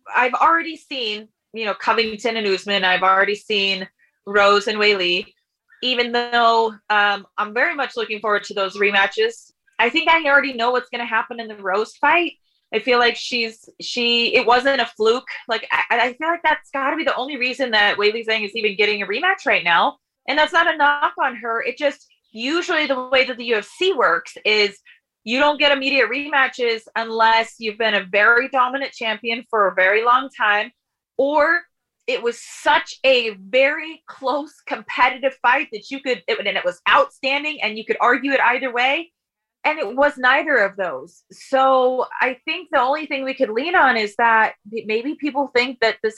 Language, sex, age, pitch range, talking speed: English, female, 20-39, 220-280 Hz, 190 wpm